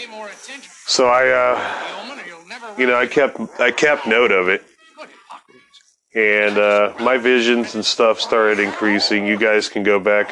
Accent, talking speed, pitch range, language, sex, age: American, 145 wpm, 100-120 Hz, English, male, 30-49